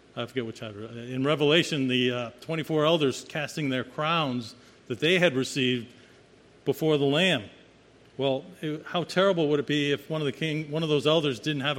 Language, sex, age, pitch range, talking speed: English, male, 50-69, 125-150 Hz, 195 wpm